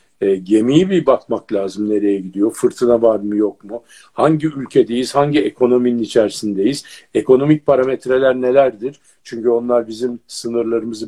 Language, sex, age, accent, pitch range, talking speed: Turkish, male, 50-69, native, 105-150 Hz, 130 wpm